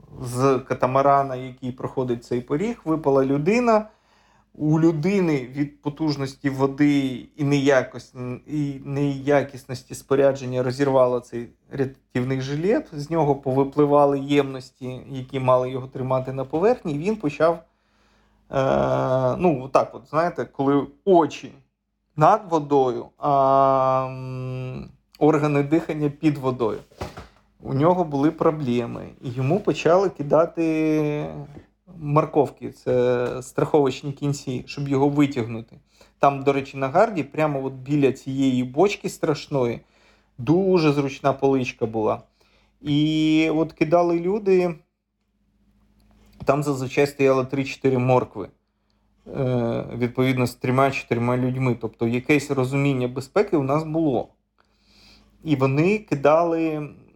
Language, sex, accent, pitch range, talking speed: Ukrainian, male, native, 130-150 Hz, 110 wpm